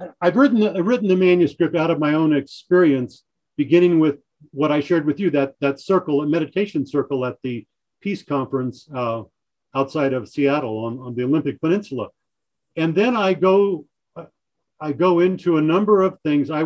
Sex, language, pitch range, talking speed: male, English, 140-180 Hz, 175 wpm